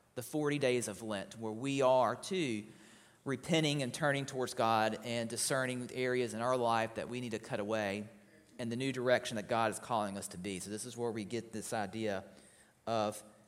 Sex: male